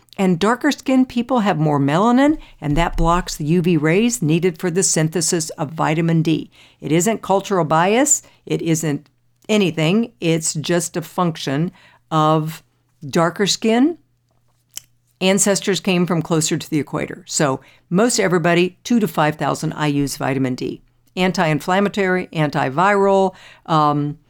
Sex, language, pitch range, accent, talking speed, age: female, English, 150-205 Hz, American, 135 wpm, 50-69